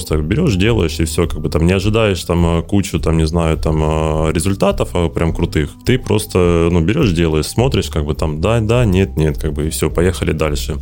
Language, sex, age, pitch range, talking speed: Russian, male, 20-39, 80-95 Hz, 205 wpm